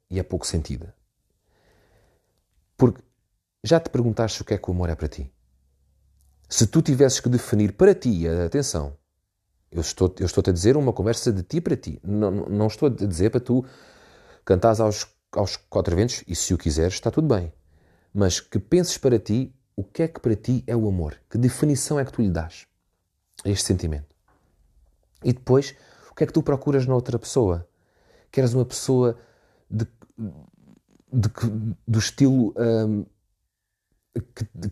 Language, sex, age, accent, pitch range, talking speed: Portuguese, male, 30-49, Portuguese, 95-125 Hz, 180 wpm